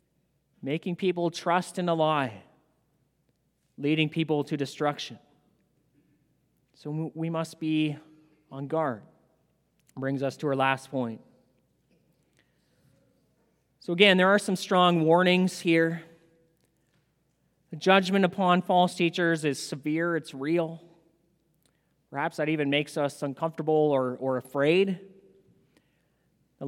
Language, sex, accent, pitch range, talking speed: English, male, American, 150-190 Hz, 110 wpm